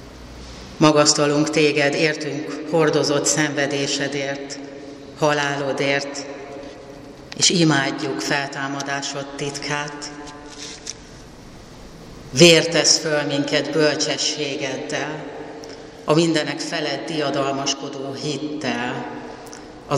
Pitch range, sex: 140-150 Hz, female